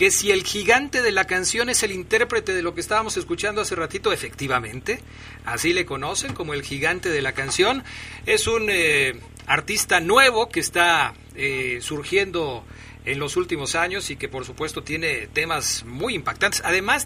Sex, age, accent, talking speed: male, 40-59, Mexican, 170 wpm